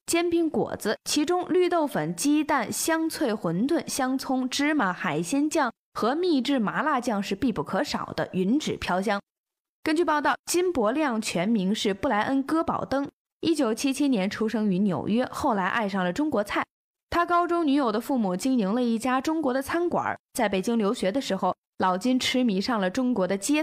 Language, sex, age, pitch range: Chinese, female, 20-39, 200-295 Hz